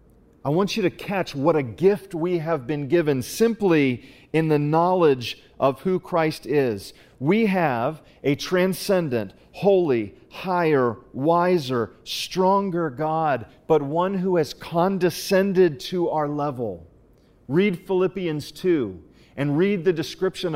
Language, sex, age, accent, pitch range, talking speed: English, male, 40-59, American, 145-180 Hz, 130 wpm